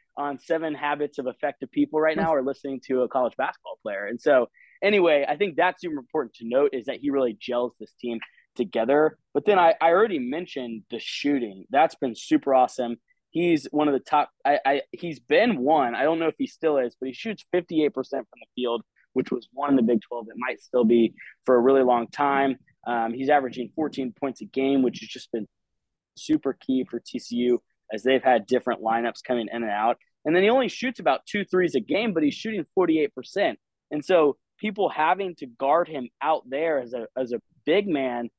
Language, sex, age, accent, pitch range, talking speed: English, male, 20-39, American, 125-160 Hz, 215 wpm